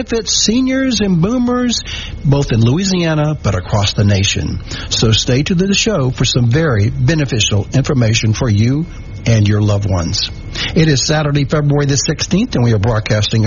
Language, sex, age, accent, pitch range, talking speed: English, male, 60-79, American, 110-165 Hz, 165 wpm